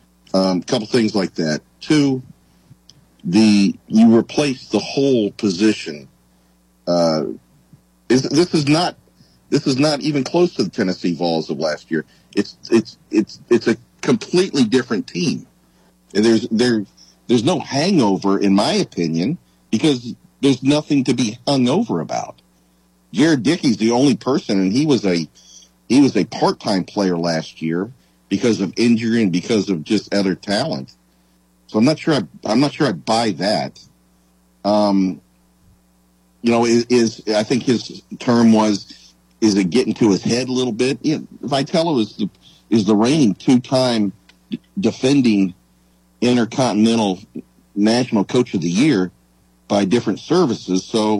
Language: English